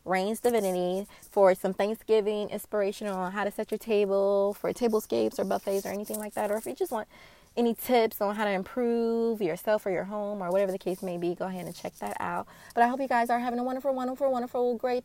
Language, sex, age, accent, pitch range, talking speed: English, female, 20-39, American, 185-230 Hz, 235 wpm